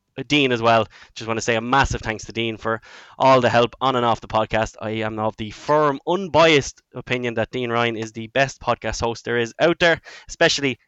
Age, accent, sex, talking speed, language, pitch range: 10-29, Irish, male, 225 wpm, English, 115-135 Hz